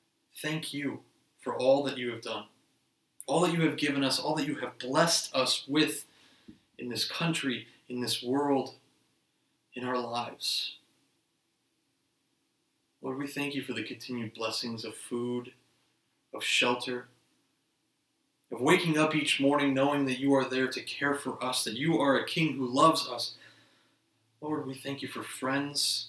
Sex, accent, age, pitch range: male, American, 30-49, 120-150 Hz